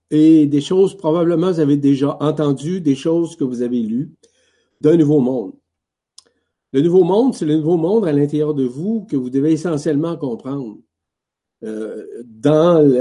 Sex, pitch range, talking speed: male, 130-170 Hz, 160 wpm